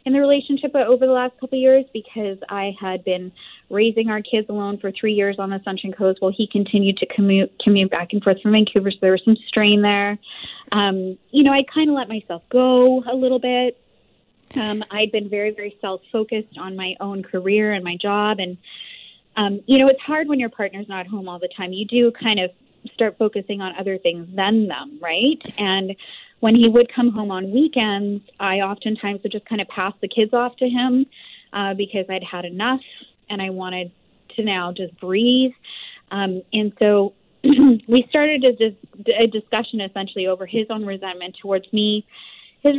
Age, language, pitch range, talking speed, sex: 20-39, English, 195-240 Hz, 195 wpm, female